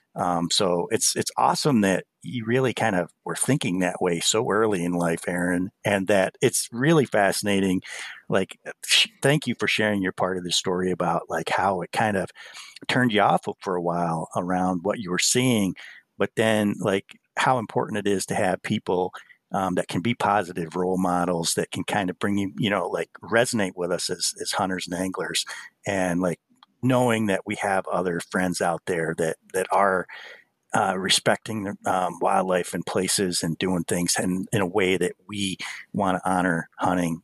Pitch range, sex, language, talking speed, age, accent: 85-100 Hz, male, English, 190 wpm, 50-69, American